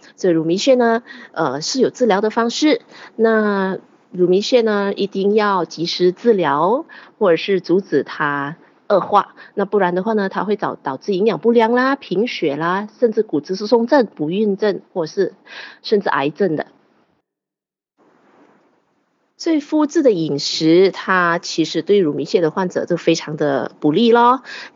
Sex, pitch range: female, 165-230 Hz